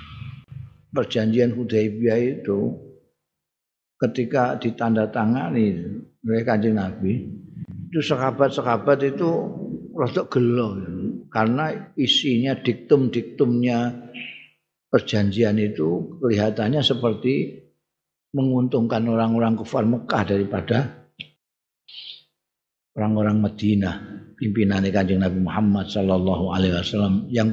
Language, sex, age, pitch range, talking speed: Indonesian, male, 50-69, 100-125 Hz, 80 wpm